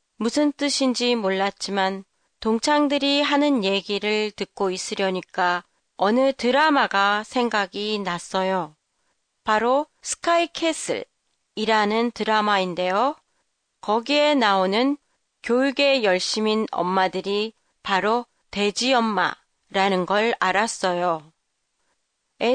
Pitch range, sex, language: 195-260 Hz, female, Japanese